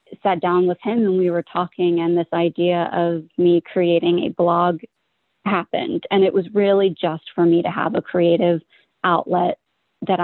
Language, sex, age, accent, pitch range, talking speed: English, female, 30-49, American, 170-195 Hz, 175 wpm